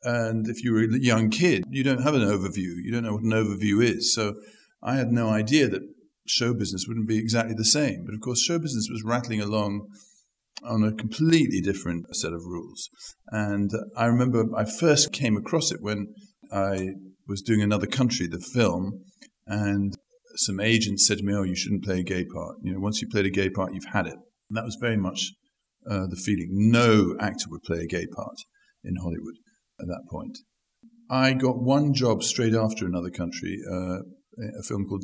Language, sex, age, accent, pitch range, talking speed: English, male, 50-69, British, 95-120 Hz, 205 wpm